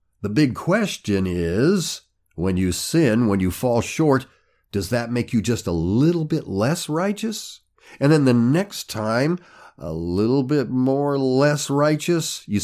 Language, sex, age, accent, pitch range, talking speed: English, male, 50-69, American, 90-140 Hz, 155 wpm